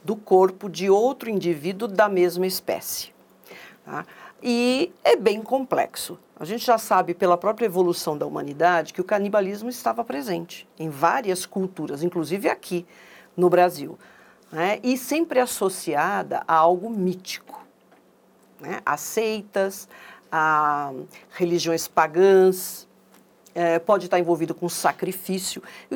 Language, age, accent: Portuguese, 50-69, Brazilian